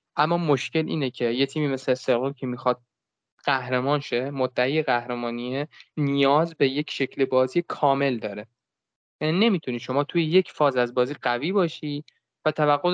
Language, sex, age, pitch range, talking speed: Persian, male, 20-39, 125-155 Hz, 150 wpm